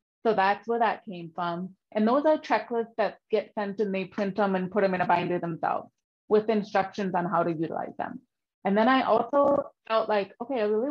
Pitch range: 190-230 Hz